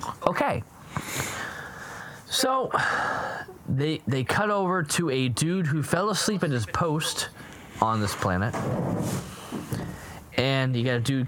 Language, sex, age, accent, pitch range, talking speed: English, male, 20-39, American, 110-160 Hz, 120 wpm